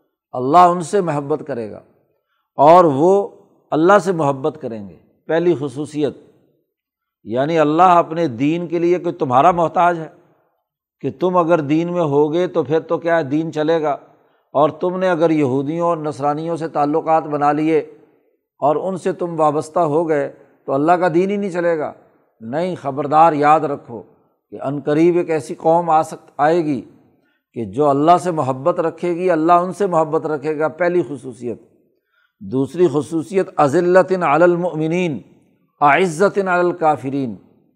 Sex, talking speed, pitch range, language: male, 160 wpm, 145-175 Hz, Urdu